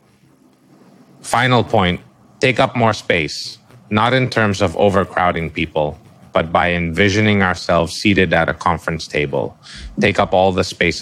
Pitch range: 85-110 Hz